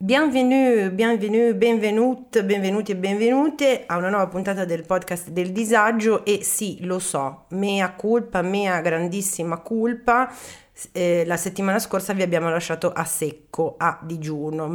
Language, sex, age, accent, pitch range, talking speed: Italian, female, 30-49, native, 165-200 Hz, 140 wpm